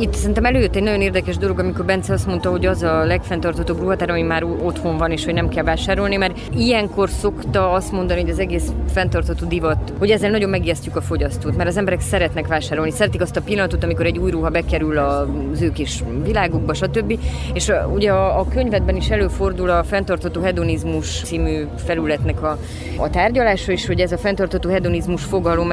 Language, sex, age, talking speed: Hungarian, female, 20-39, 185 wpm